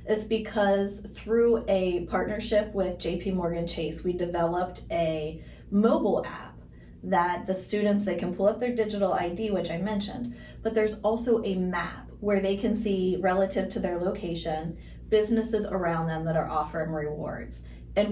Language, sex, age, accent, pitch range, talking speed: English, female, 30-49, American, 165-205 Hz, 160 wpm